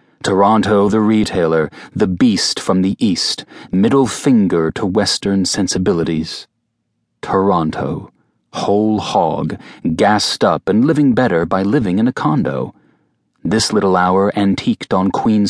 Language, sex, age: English, male, 40-59